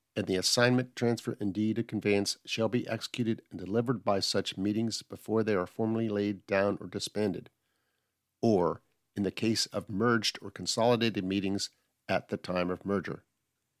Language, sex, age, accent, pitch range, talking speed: English, male, 50-69, American, 95-115 Hz, 165 wpm